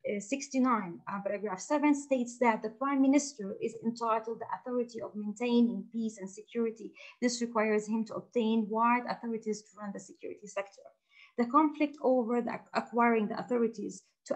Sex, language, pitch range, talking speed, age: female, English, 225-275 Hz, 165 wpm, 30-49